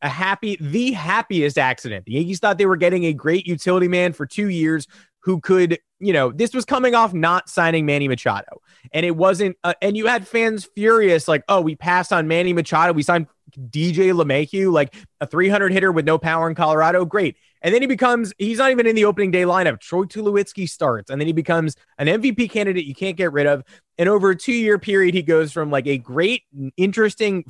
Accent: American